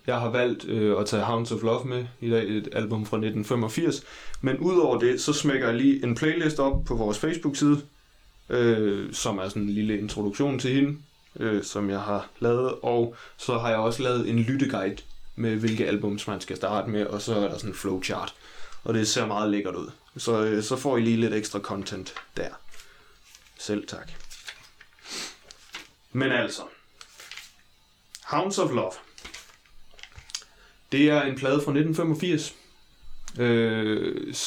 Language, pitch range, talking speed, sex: Danish, 110-135 Hz, 165 wpm, male